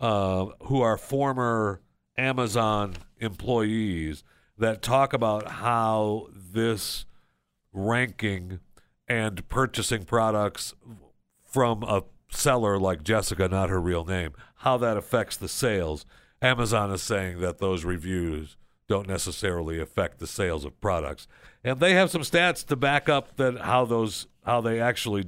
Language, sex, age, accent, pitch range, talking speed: English, male, 60-79, American, 95-135 Hz, 135 wpm